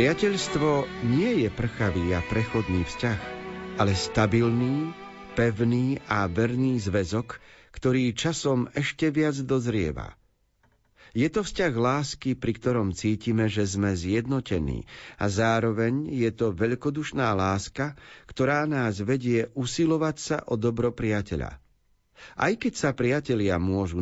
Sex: male